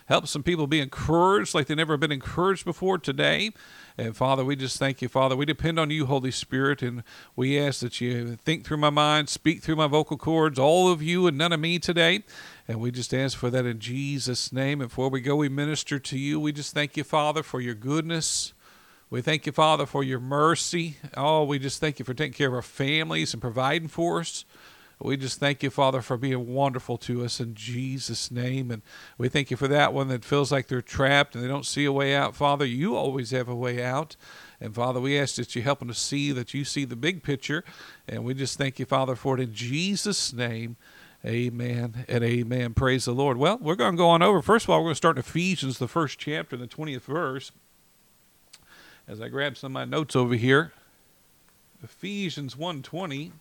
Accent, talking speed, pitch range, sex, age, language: American, 220 wpm, 125-155 Hz, male, 50-69, English